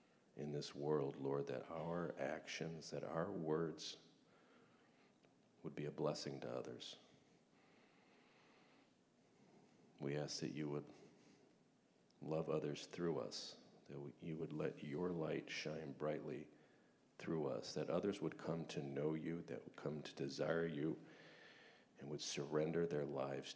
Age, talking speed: 50-69, 135 wpm